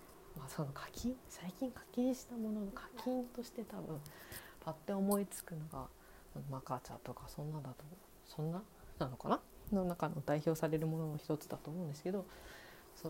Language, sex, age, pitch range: Japanese, female, 40-59, 155-220 Hz